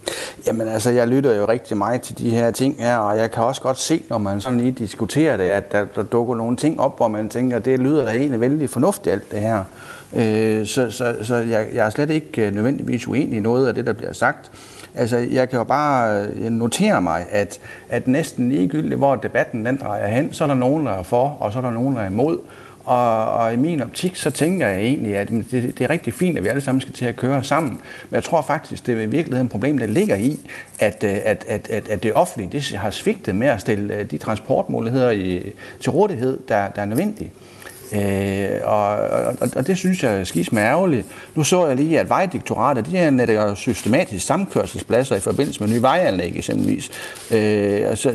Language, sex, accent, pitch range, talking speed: Danish, male, native, 105-140 Hz, 225 wpm